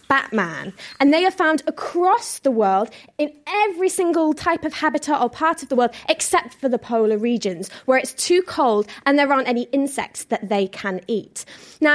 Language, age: English, 20-39